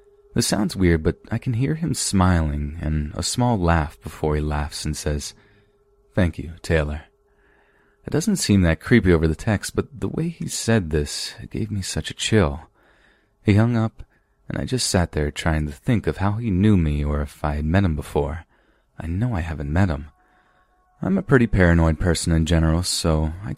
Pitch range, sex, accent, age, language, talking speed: 75-105 Hz, male, American, 30-49, English, 200 wpm